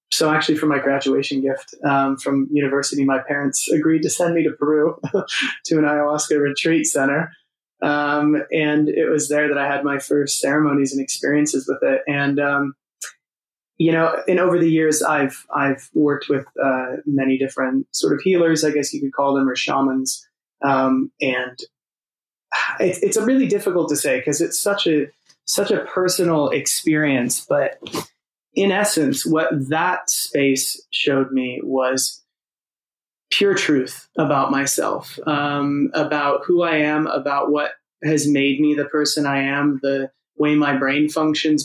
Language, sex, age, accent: English, male, 20-39, American